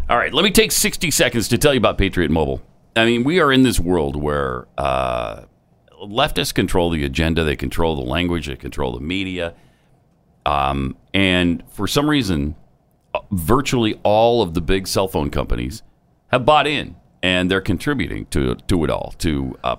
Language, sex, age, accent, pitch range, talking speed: English, male, 40-59, American, 75-125 Hz, 180 wpm